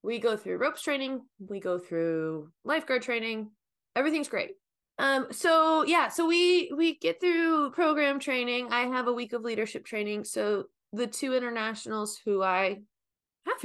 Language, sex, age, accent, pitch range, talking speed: English, female, 20-39, American, 210-280 Hz, 160 wpm